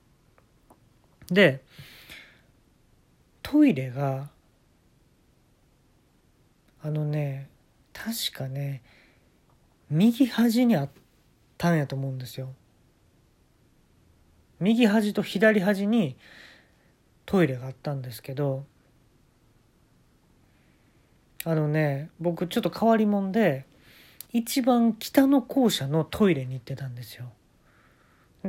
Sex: male